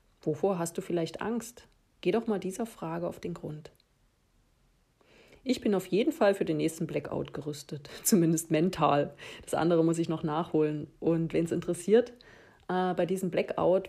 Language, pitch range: German, 160-200 Hz